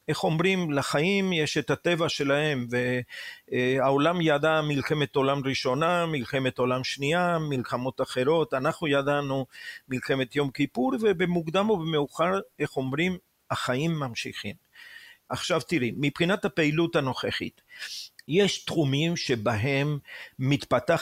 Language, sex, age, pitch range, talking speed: Hebrew, male, 50-69, 130-165 Hz, 110 wpm